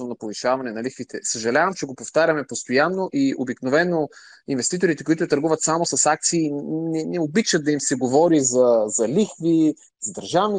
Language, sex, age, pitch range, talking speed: Bulgarian, male, 30-49, 125-170 Hz, 165 wpm